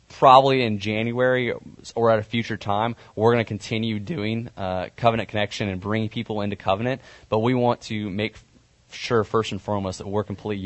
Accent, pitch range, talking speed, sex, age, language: American, 95-110 Hz, 185 wpm, male, 20-39, English